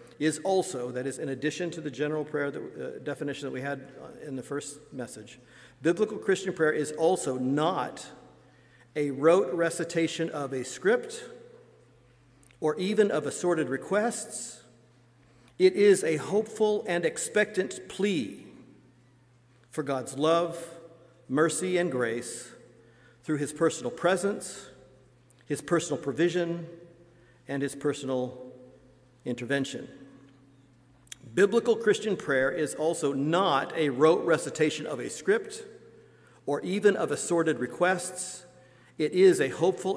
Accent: American